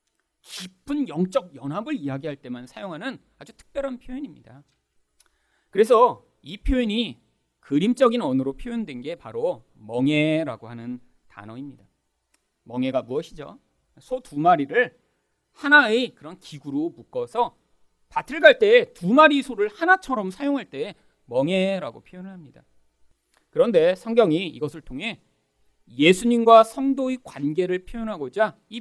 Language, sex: Korean, male